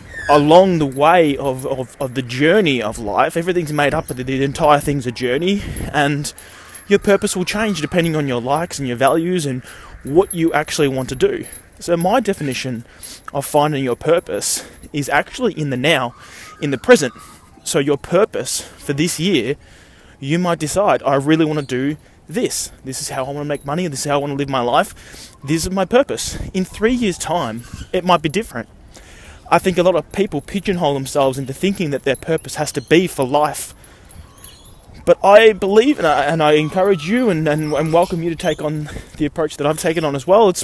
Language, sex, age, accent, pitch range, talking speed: English, male, 20-39, Australian, 135-180 Hz, 210 wpm